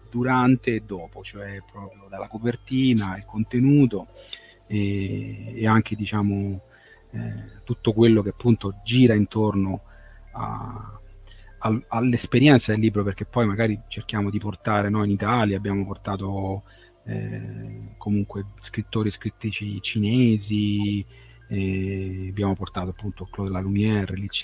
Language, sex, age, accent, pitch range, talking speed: Italian, male, 30-49, native, 100-115 Hz, 125 wpm